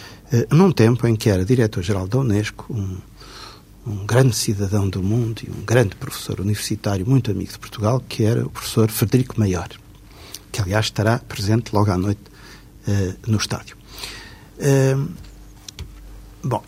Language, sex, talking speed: Portuguese, male, 140 wpm